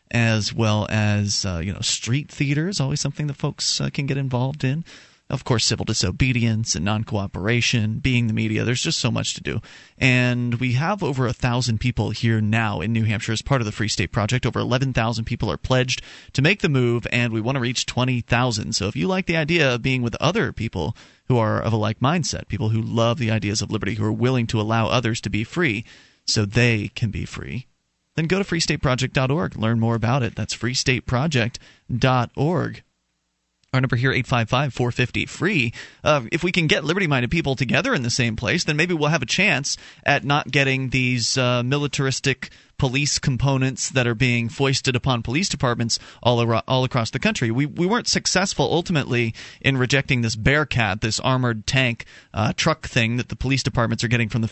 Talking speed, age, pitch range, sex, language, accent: 195 wpm, 30-49, 115-135 Hz, male, English, American